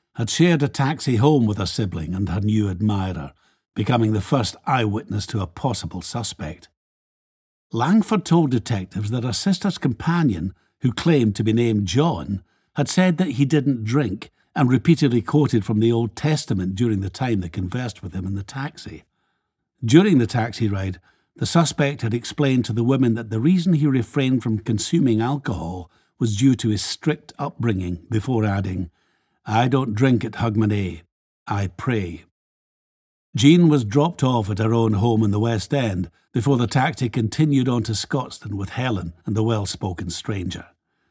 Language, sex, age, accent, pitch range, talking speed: English, male, 60-79, British, 100-135 Hz, 170 wpm